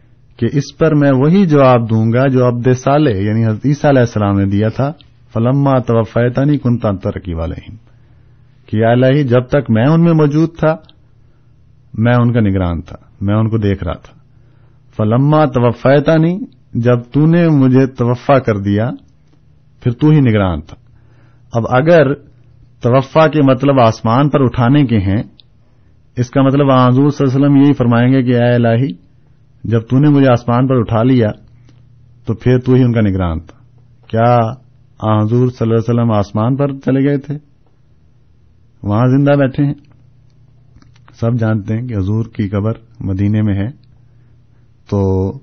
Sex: male